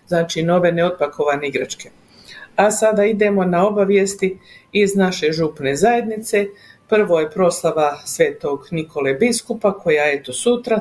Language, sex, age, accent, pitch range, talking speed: Croatian, female, 50-69, native, 160-210 Hz, 130 wpm